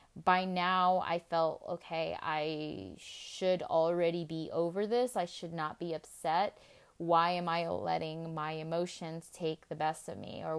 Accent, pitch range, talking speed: American, 170-215 Hz, 160 wpm